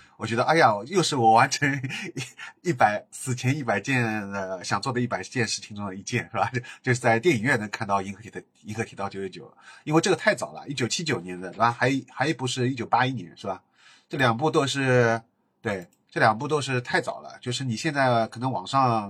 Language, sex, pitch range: Chinese, male, 110-130 Hz